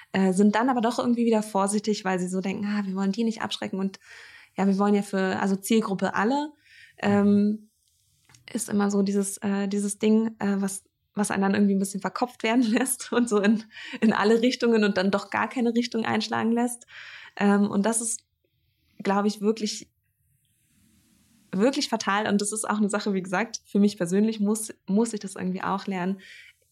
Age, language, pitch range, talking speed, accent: 20-39, German, 190-225 Hz, 195 wpm, German